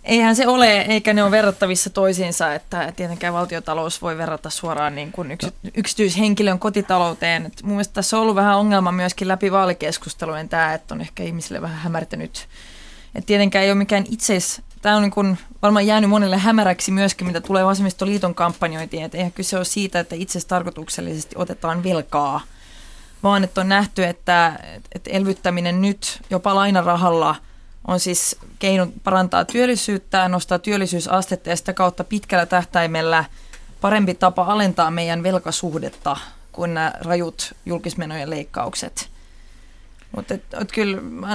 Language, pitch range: Finnish, 170-200 Hz